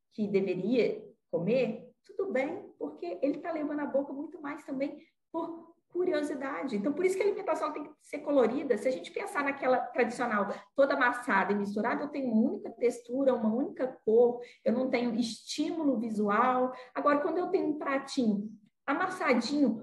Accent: Brazilian